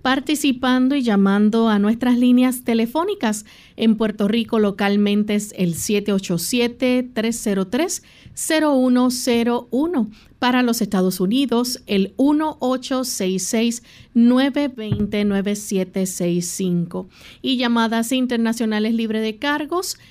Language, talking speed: Spanish, 85 wpm